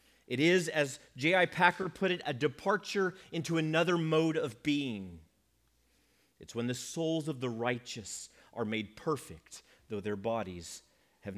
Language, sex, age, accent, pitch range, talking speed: English, male, 40-59, American, 100-160 Hz, 150 wpm